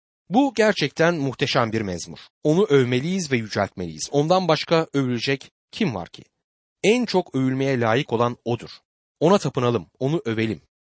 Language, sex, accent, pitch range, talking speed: Turkish, male, native, 115-180 Hz, 140 wpm